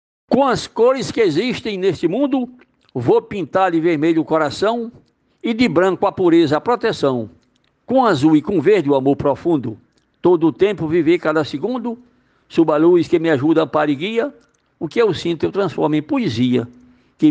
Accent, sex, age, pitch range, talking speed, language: Brazilian, male, 60-79, 160-235 Hz, 180 wpm, Portuguese